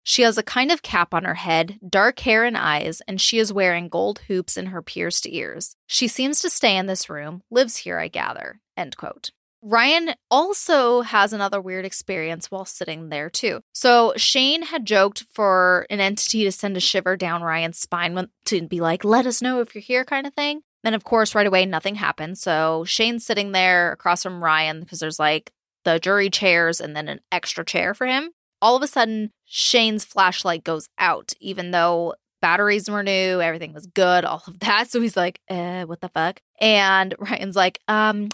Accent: American